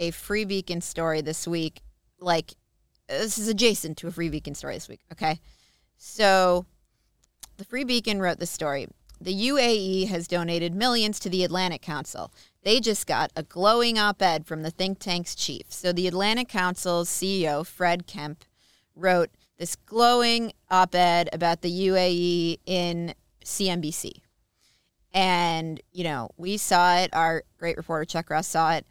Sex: female